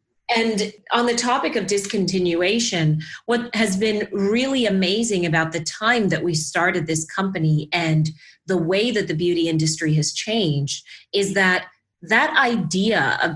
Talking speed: 150 wpm